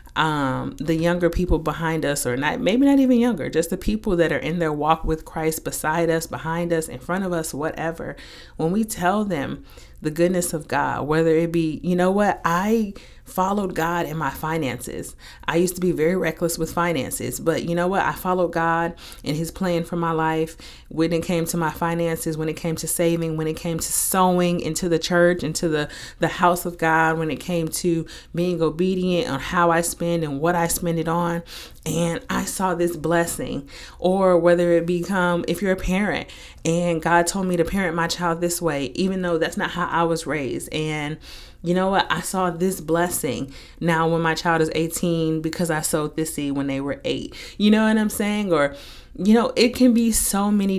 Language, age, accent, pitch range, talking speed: English, 30-49, American, 160-185 Hz, 215 wpm